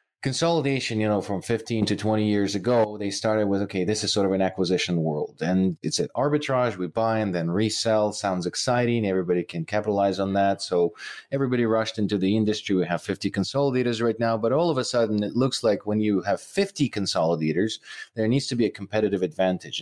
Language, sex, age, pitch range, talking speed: English, male, 30-49, 95-120 Hz, 205 wpm